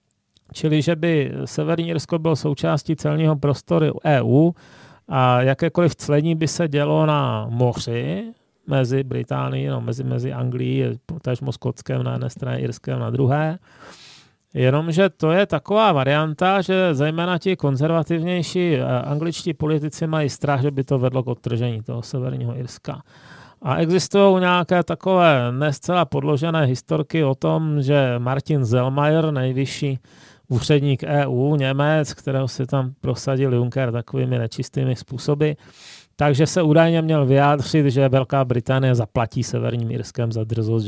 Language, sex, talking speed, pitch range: Czech, male, 135 wpm, 125-155 Hz